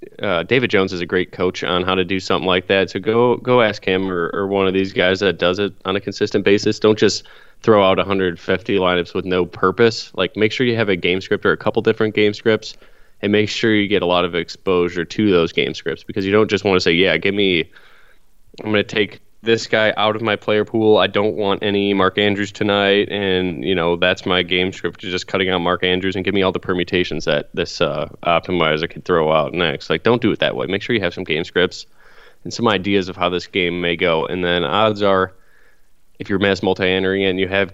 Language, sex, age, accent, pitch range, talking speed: English, male, 20-39, American, 90-100 Hz, 250 wpm